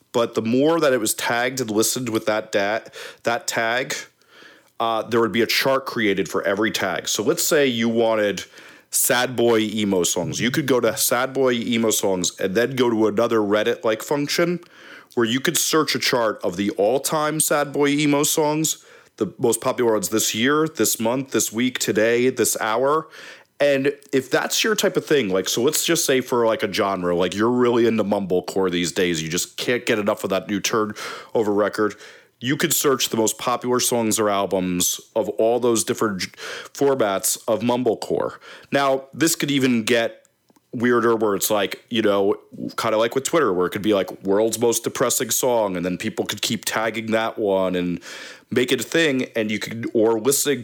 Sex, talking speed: male, 200 wpm